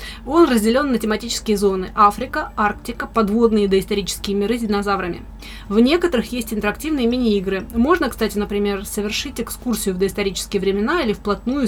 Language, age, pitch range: Russian, 20-39, 200-235 Hz